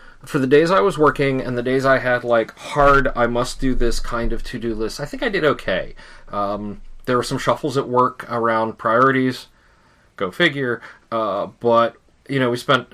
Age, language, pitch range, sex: 30-49, English, 105-125 Hz, male